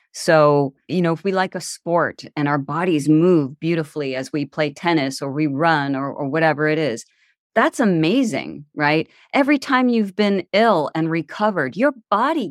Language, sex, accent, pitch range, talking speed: English, female, American, 155-225 Hz, 175 wpm